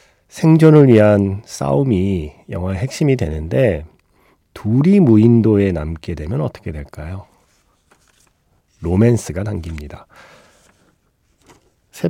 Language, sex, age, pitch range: Korean, male, 40-59, 90-130 Hz